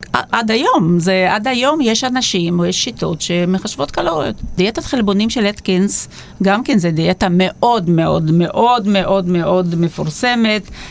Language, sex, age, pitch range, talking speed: Hebrew, female, 40-59, 180-240 Hz, 145 wpm